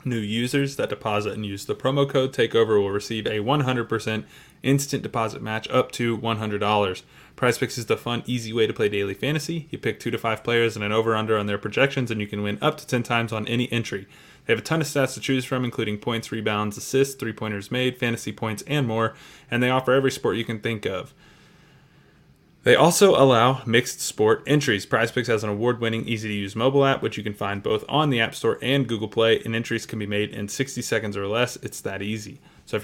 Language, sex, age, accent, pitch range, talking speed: English, male, 20-39, American, 110-130 Hz, 220 wpm